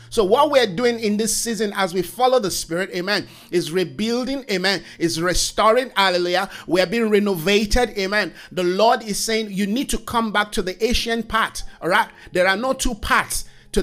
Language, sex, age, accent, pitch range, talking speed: English, male, 50-69, Nigerian, 190-235 Hz, 200 wpm